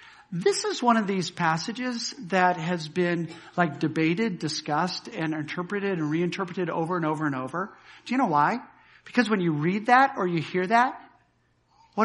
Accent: American